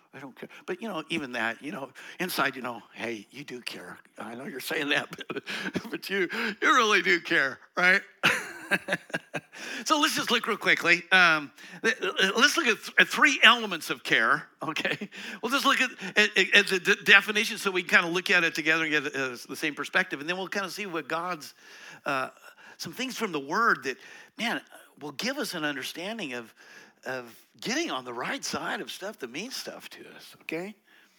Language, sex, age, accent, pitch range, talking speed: English, male, 60-79, American, 150-220 Hz, 200 wpm